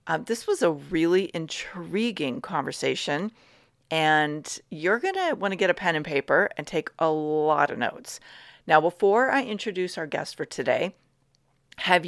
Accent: American